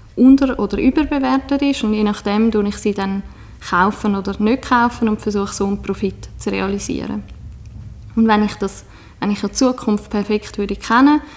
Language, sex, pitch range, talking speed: German, female, 200-225 Hz, 175 wpm